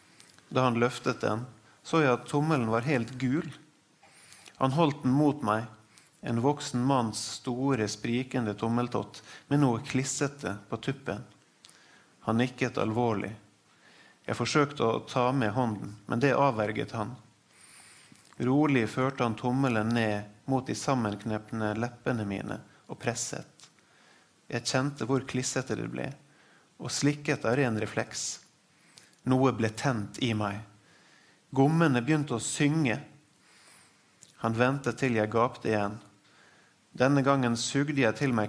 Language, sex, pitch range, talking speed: English, male, 110-135 Hz, 130 wpm